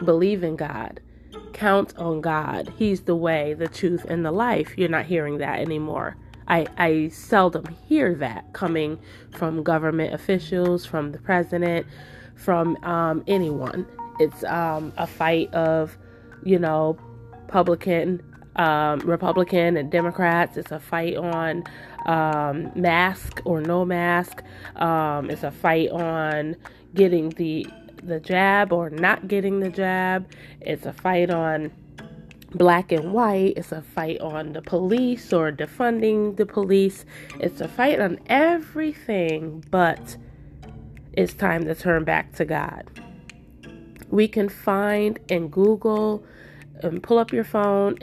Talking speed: 135 wpm